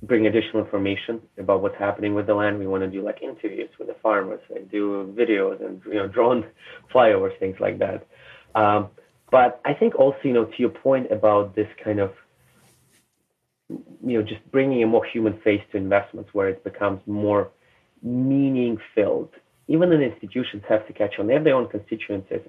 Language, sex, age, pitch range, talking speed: English, male, 30-49, 100-115 Hz, 190 wpm